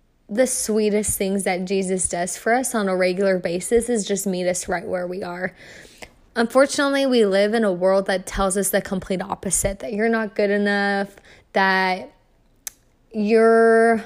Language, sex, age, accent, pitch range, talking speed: English, female, 20-39, American, 190-220 Hz, 165 wpm